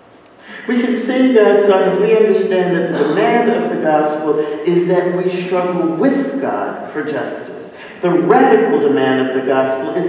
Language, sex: English, male